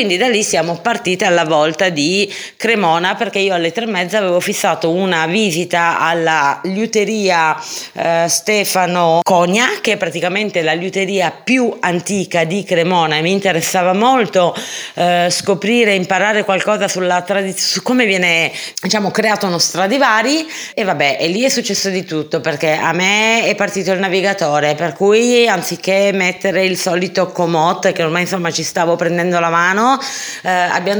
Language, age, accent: Italian, 30-49, native